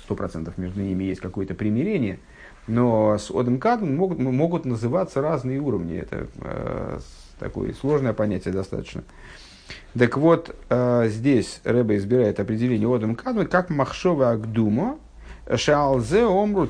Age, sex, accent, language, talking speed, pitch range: 50-69, male, native, Russian, 120 wpm, 100-140 Hz